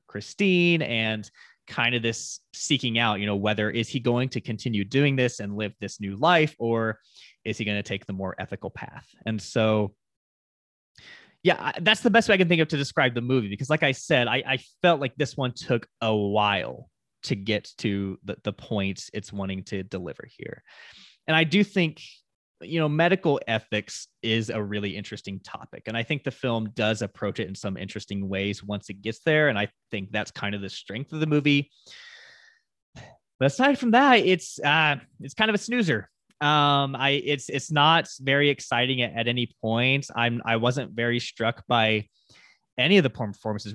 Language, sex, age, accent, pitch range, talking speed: English, male, 20-39, American, 105-145 Hz, 195 wpm